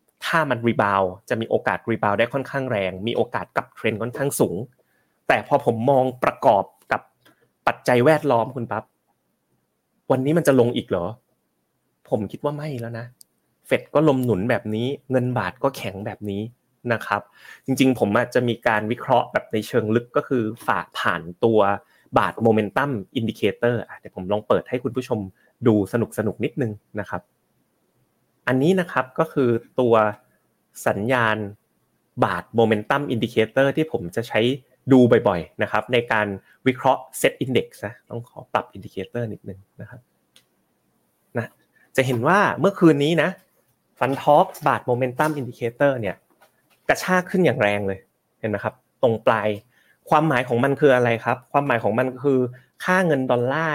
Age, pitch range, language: 30-49, 110-135 Hz, Thai